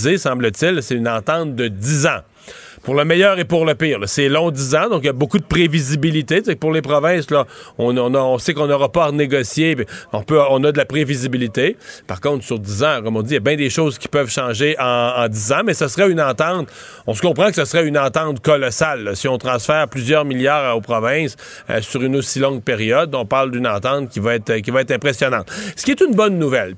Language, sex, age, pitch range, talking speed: French, male, 40-59, 130-170 Hz, 255 wpm